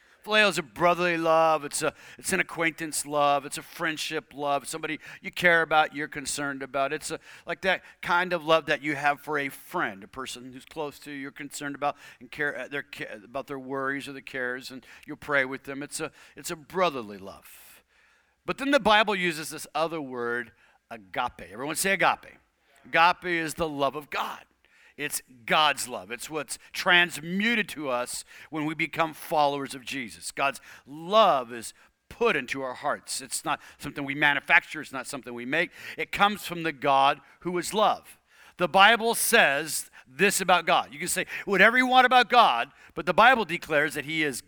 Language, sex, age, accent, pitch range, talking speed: English, male, 50-69, American, 140-175 Hz, 190 wpm